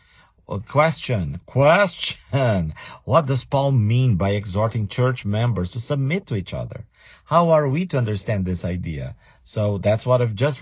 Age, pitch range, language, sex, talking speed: 50-69, 100-135 Hz, English, male, 155 wpm